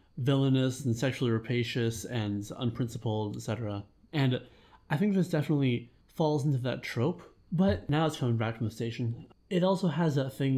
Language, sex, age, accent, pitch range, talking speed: English, male, 30-49, American, 115-150 Hz, 165 wpm